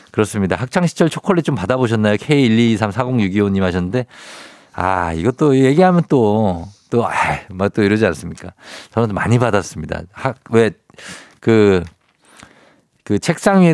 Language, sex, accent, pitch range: Korean, male, native, 95-130 Hz